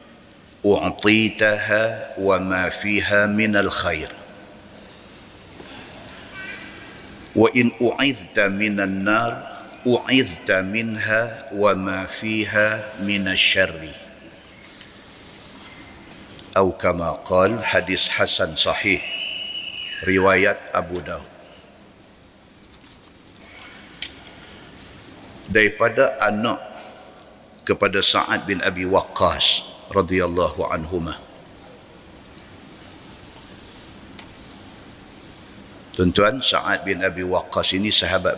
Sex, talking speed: male, 65 wpm